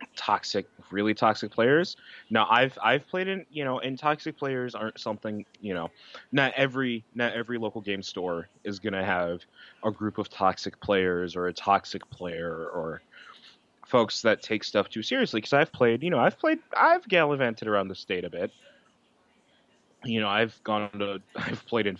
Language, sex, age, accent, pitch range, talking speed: English, male, 20-39, American, 95-125 Hz, 180 wpm